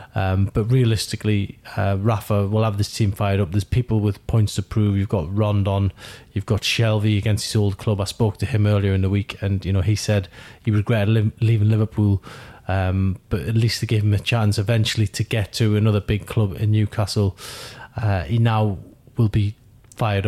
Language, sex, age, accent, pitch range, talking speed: English, male, 30-49, British, 100-115 Hz, 200 wpm